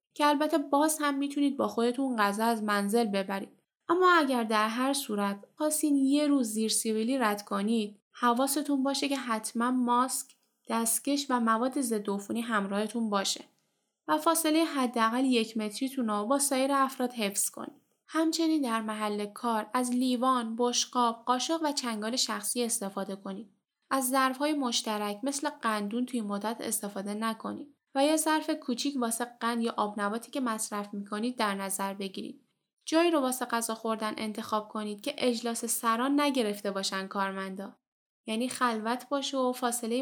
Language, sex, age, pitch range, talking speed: Persian, female, 10-29, 210-270 Hz, 150 wpm